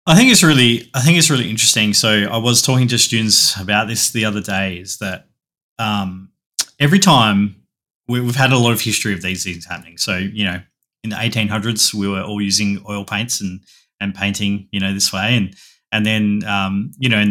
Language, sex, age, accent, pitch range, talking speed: English, male, 20-39, Australian, 100-120 Hz, 215 wpm